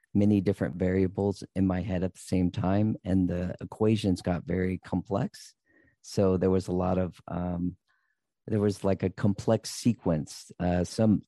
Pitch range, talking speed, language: 90-100 Hz, 165 wpm, English